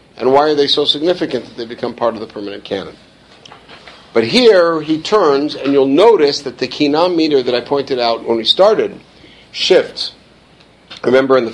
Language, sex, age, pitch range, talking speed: English, male, 50-69, 115-140 Hz, 185 wpm